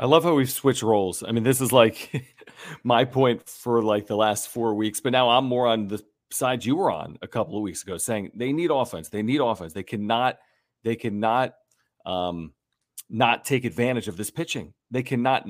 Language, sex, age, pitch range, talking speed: English, male, 40-59, 110-130 Hz, 210 wpm